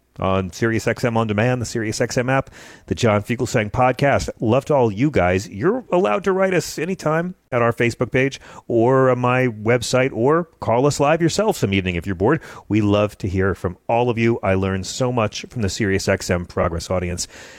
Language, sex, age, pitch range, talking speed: English, male, 40-59, 100-160 Hz, 190 wpm